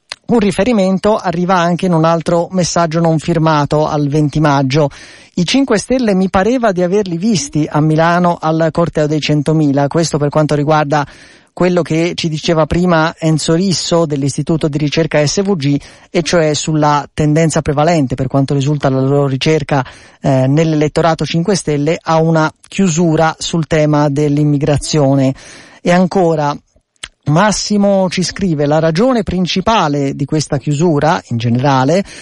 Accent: native